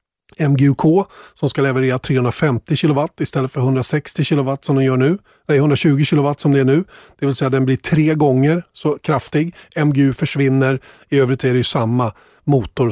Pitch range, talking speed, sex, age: 130-150 Hz, 185 wpm, male, 30-49